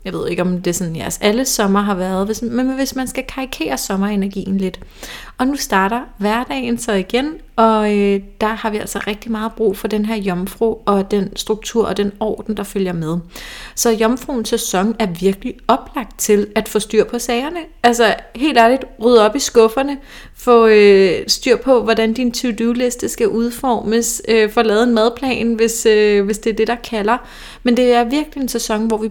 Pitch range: 205-245 Hz